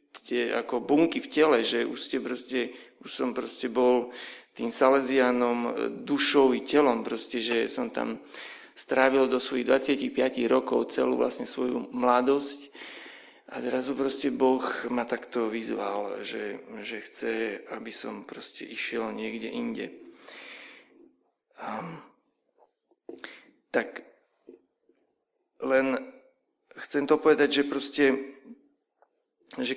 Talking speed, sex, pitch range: 105 wpm, male, 120-145 Hz